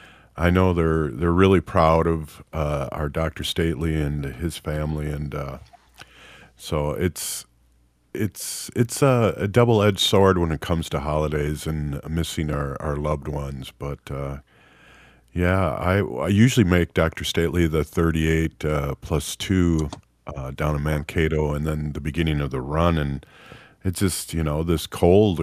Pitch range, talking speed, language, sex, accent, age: 70-80 Hz, 160 wpm, English, male, American, 50-69